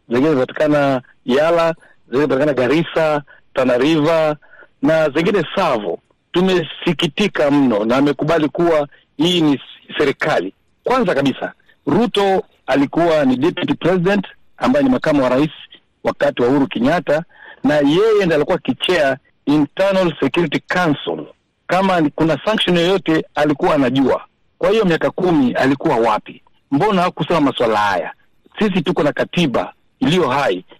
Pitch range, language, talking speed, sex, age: 155-215 Hz, Swahili, 125 wpm, male, 60-79